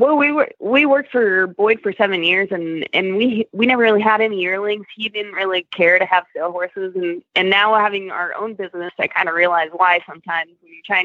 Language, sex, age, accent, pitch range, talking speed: English, female, 20-39, American, 180-210 Hz, 235 wpm